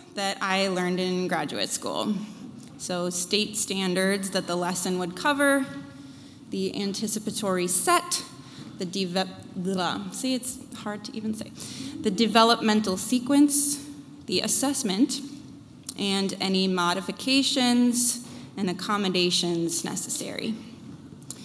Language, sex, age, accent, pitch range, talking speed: English, female, 20-39, American, 190-255 Hz, 100 wpm